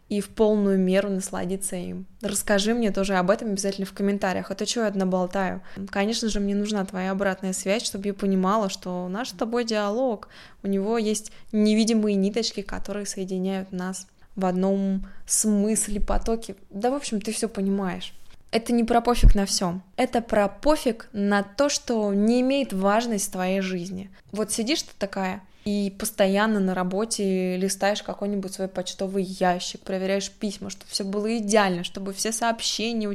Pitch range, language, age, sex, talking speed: 195-220 Hz, Russian, 20-39, female, 165 wpm